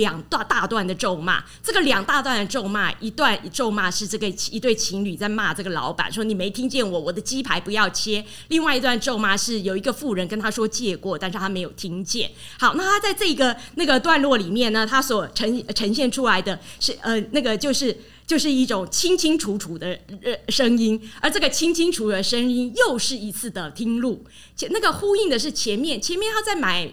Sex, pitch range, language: female, 200-265 Hz, Chinese